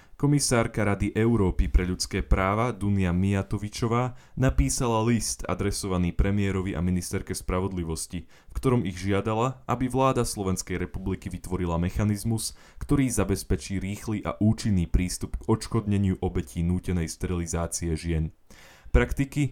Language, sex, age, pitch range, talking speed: Slovak, male, 10-29, 90-110 Hz, 115 wpm